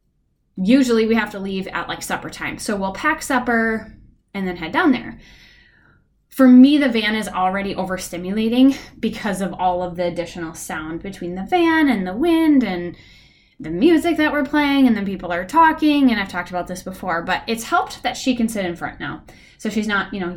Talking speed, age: 205 wpm, 10-29